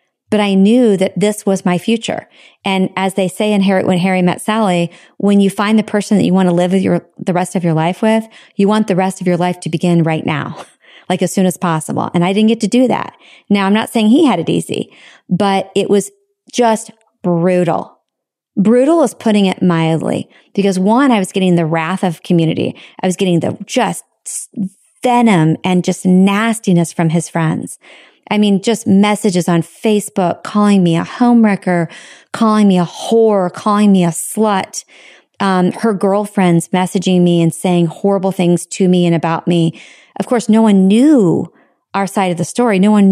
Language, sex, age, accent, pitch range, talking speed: English, female, 40-59, American, 175-210 Hz, 200 wpm